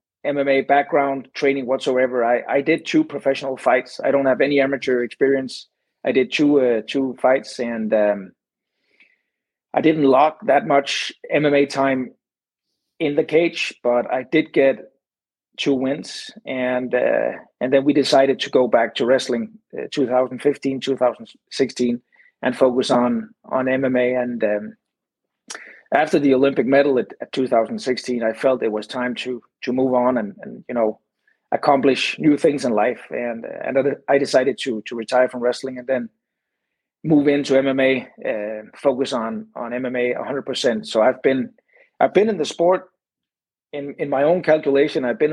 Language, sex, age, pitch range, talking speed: English, male, 30-49, 125-140 Hz, 165 wpm